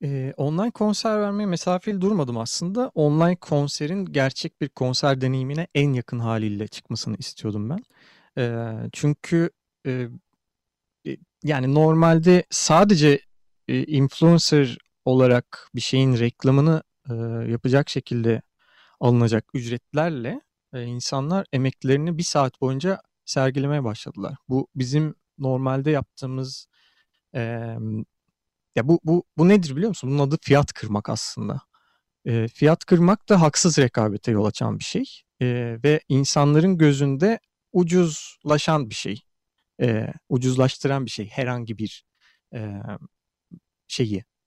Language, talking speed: Turkish, 105 wpm